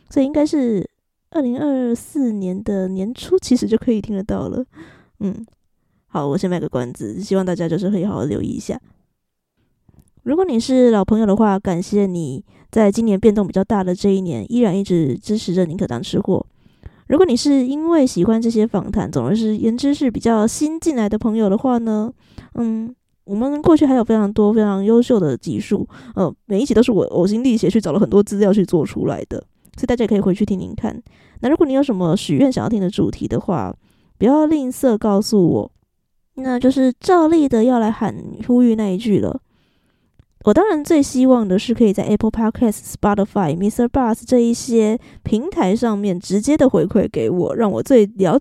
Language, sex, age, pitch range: Chinese, female, 20-39, 195-250 Hz